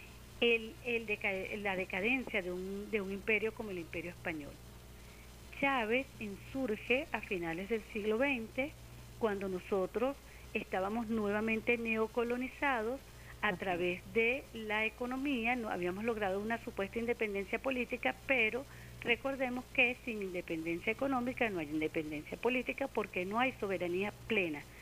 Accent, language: American, Spanish